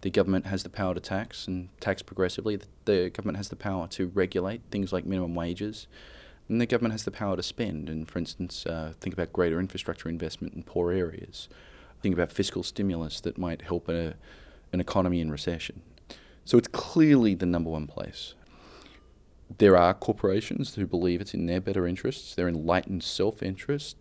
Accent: Australian